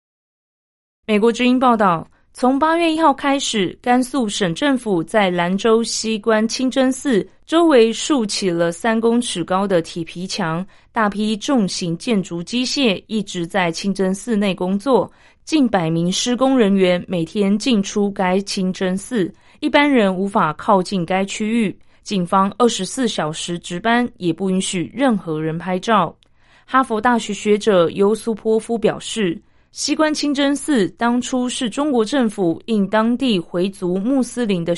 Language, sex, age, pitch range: Chinese, female, 20-39, 185-240 Hz